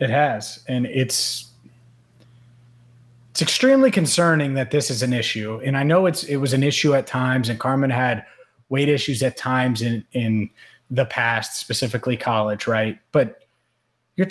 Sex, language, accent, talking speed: male, English, American, 160 wpm